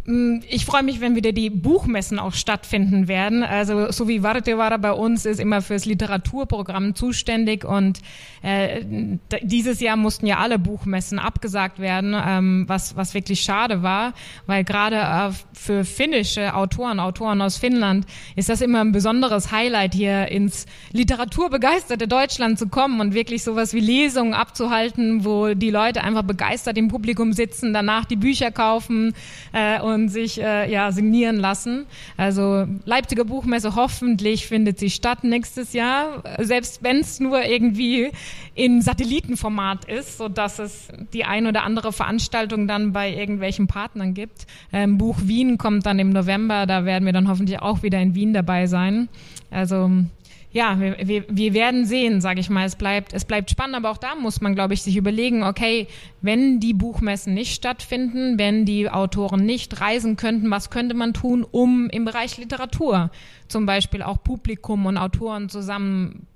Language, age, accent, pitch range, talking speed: German, 20-39, German, 195-235 Hz, 165 wpm